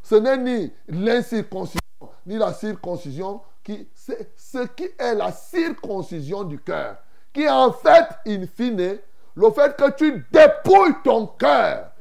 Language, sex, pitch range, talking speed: French, male, 170-255 Hz, 145 wpm